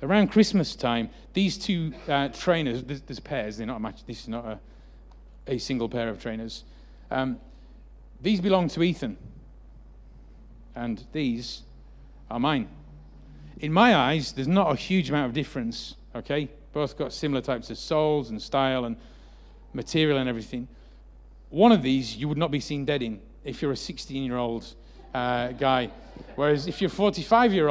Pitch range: 120-180 Hz